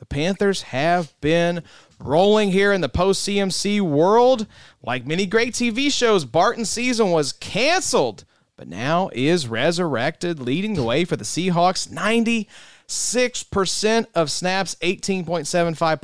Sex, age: male, 30-49